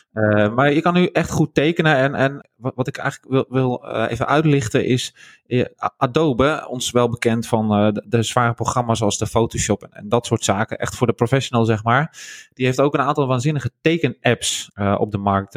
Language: Dutch